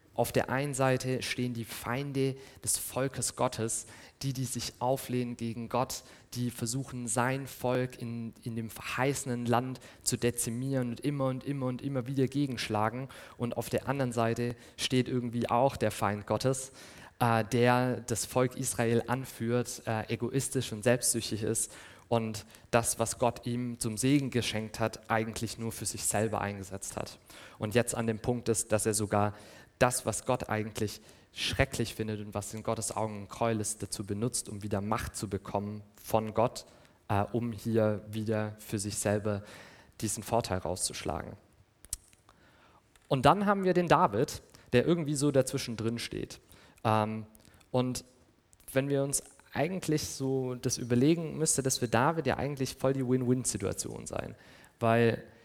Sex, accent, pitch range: male, German, 110-130 Hz